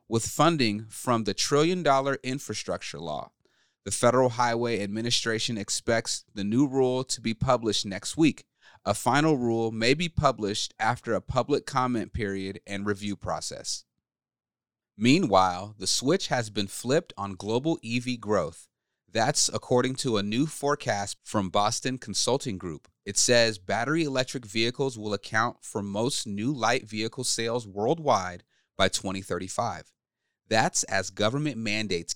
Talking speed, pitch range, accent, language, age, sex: 140 wpm, 105-130 Hz, American, English, 30-49, male